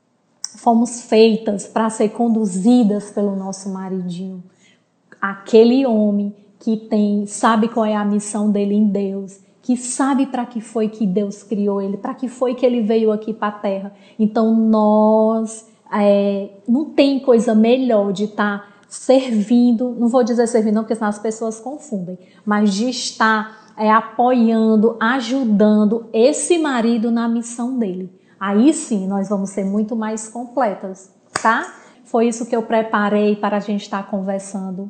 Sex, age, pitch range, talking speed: female, 20-39, 205-240 Hz, 155 wpm